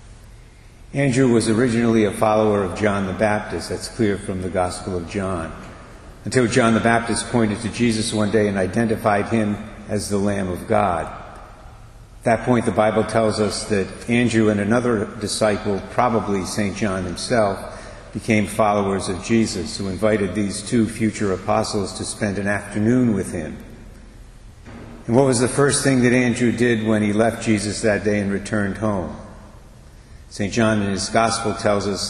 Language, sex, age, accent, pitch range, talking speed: English, male, 50-69, American, 100-115 Hz, 170 wpm